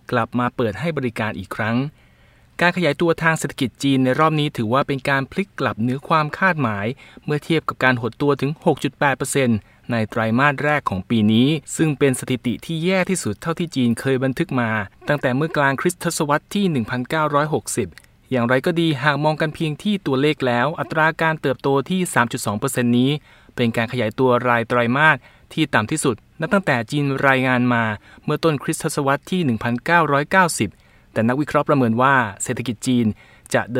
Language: Thai